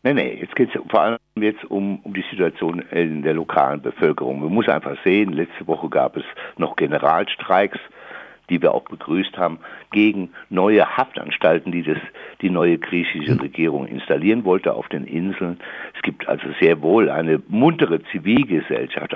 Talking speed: 165 wpm